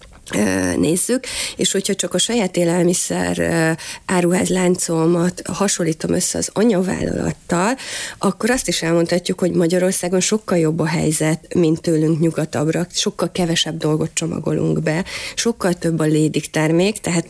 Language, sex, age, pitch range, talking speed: Hungarian, female, 30-49, 160-180 Hz, 125 wpm